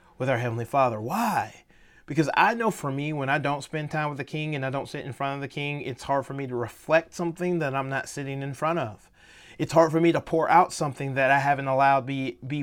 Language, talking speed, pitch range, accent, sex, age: English, 260 wpm, 135-180 Hz, American, male, 30-49